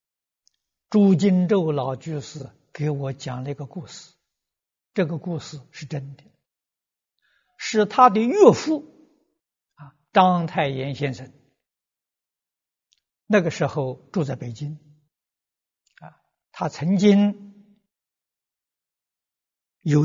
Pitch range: 145-225 Hz